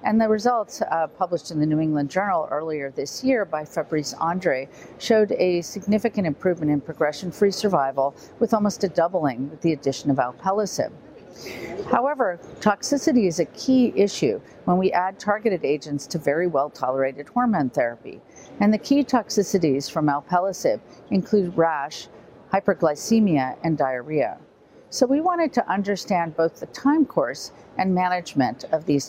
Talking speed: 150 wpm